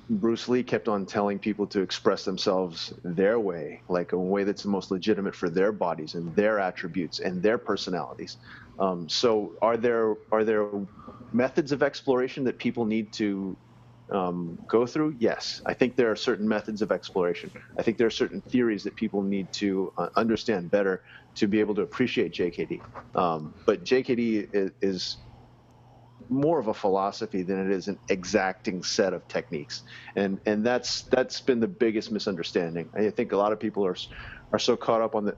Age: 30-49